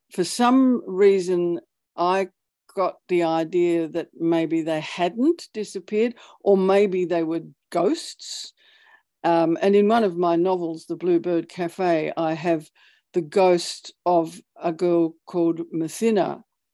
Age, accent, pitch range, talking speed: 60-79, Australian, 165-215 Hz, 130 wpm